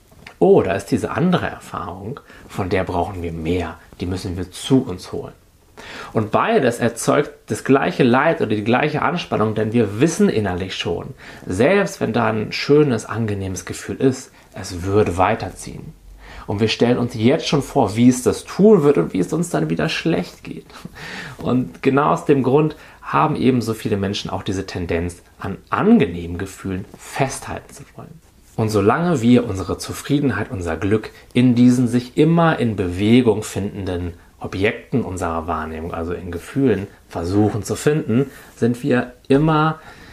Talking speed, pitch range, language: 160 wpm, 95-135 Hz, German